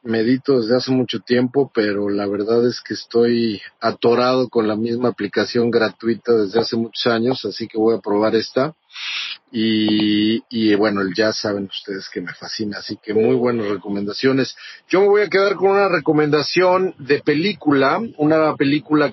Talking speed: 165 wpm